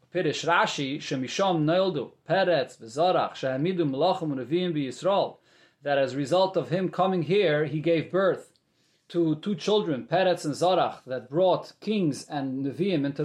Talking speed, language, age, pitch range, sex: 105 wpm, English, 30-49, 155-195 Hz, male